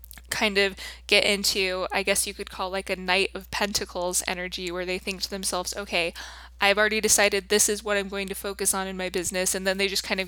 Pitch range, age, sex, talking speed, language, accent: 180-205 Hz, 20-39, female, 240 wpm, English, American